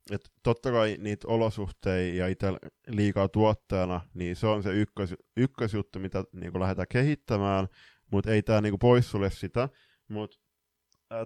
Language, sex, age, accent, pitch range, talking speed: Finnish, male, 20-39, native, 95-120 Hz, 140 wpm